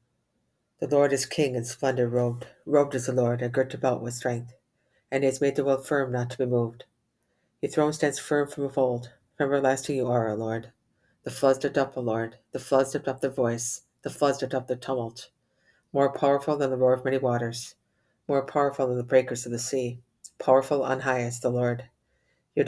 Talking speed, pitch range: 215 wpm, 120-135 Hz